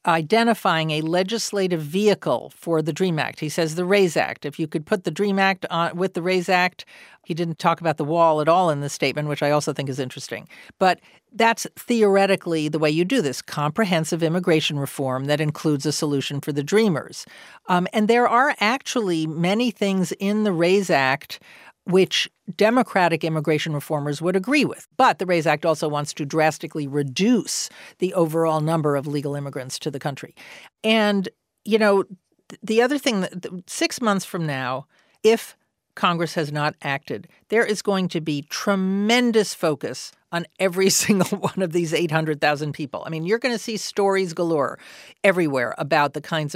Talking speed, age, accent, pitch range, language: 180 wpm, 50-69, American, 155-200 Hz, English